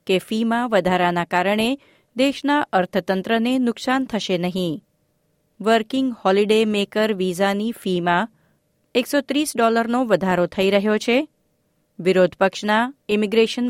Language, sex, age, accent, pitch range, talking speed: Gujarati, female, 30-49, native, 185-245 Hz, 105 wpm